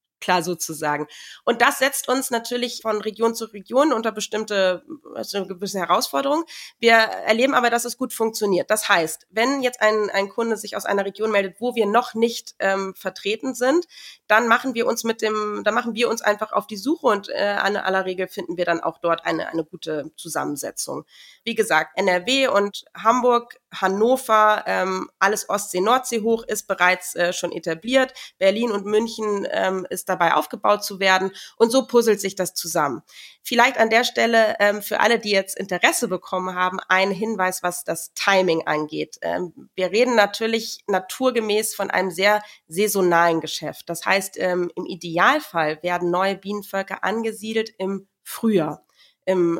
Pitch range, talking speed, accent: 185-225 Hz, 160 wpm, German